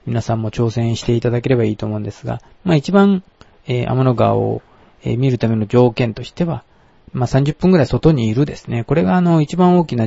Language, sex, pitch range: Japanese, male, 115-155 Hz